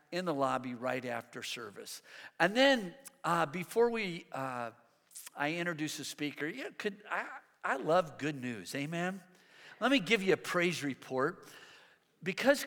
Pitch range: 155-205 Hz